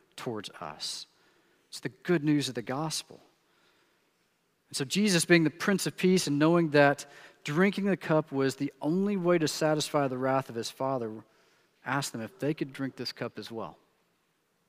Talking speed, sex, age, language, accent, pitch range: 180 wpm, male, 40-59, English, American, 130-175 Hz